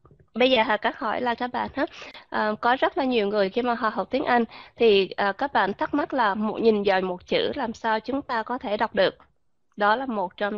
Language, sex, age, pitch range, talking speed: Vietnamese, female, 20-39, 200-255 Hz, 225 wpm